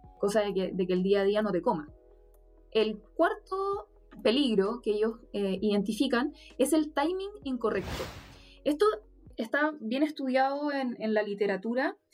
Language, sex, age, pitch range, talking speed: Spanish, female, 20-39, 215-280 Hz, 160 wpm